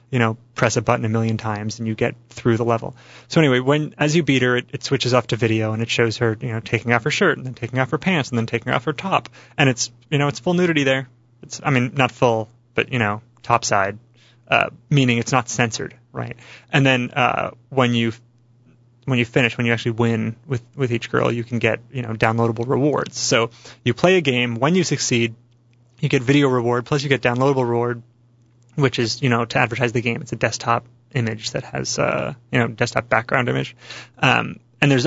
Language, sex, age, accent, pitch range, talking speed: English, male, 30-49, American, 115-130 Hz, 235 wpm